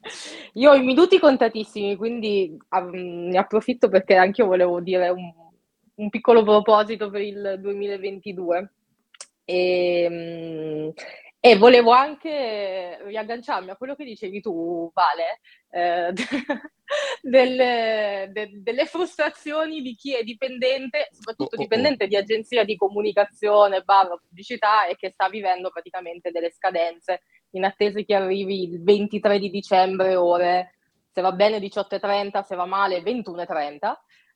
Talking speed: 125 wpm